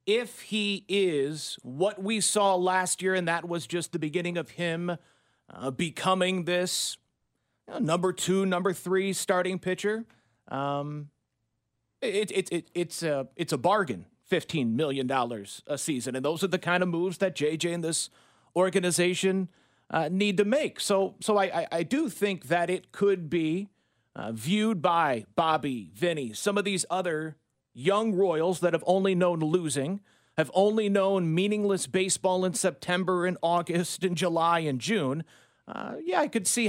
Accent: American